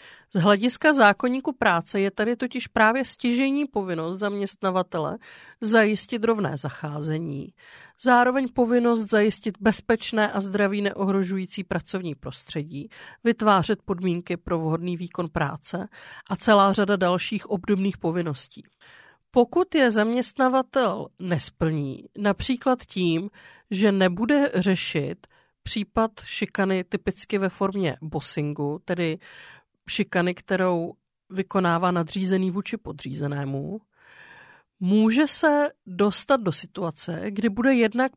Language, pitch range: Czech, 175-230 Hz